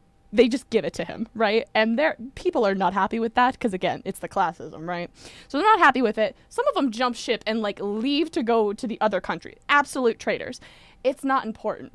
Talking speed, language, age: 225 wpm, English, 20-39